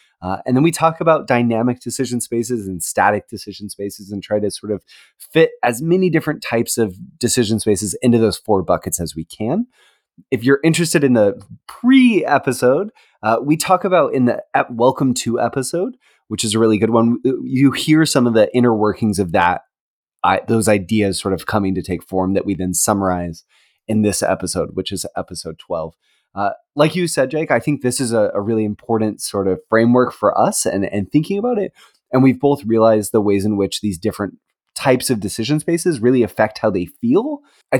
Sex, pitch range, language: male, 105-140 Hz, English